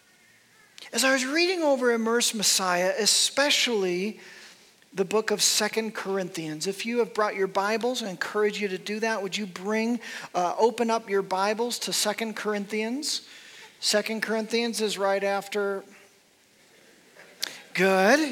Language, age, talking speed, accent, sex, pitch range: English, 40-59, 140 wpm, American, male, 210-255 Hz